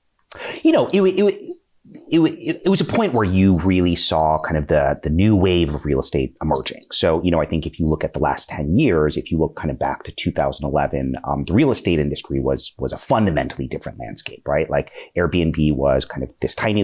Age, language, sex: 30-49, English, male